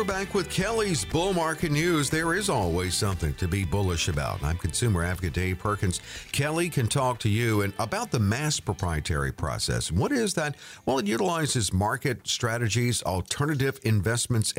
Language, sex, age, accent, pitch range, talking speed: English, male, 50-69, American, 95-140 Hz, 170 wpm